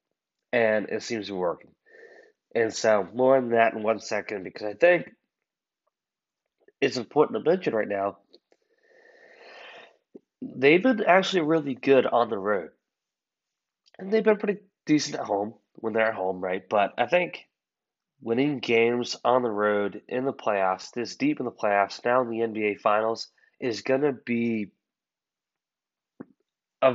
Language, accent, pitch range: English, American, 105-150 Hz